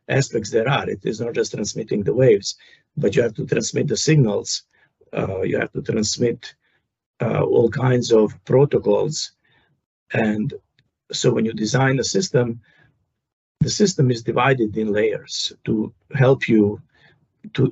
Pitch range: 110-135 Hz